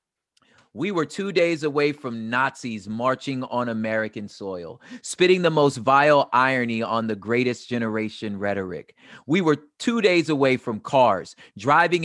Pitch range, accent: 125-170 Hz, American